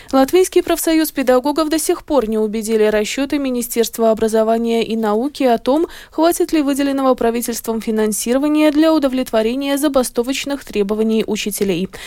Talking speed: 125 wpm